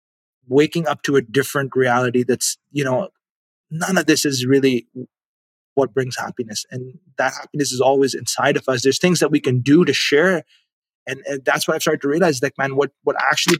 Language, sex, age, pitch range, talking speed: English, male, 20-39, 130-160 Hz, 205 wpm